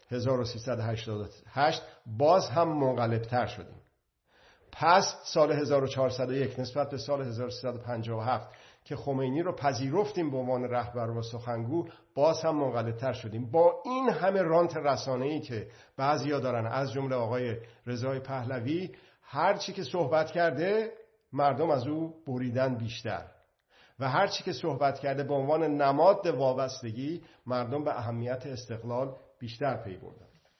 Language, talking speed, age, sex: Persian, 125 wpm, 50-69, male